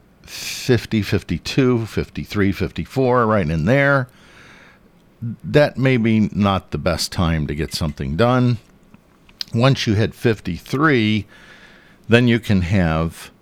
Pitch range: 80-120 Hz